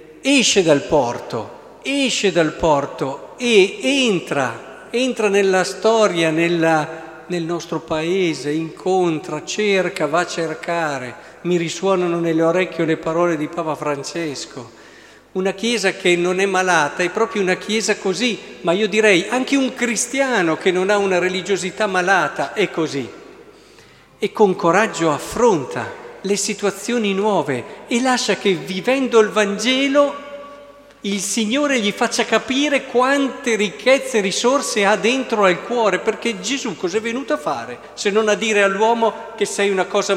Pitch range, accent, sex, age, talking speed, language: 180-245 Hz, native, male, 50-69, 140 wpm, Italian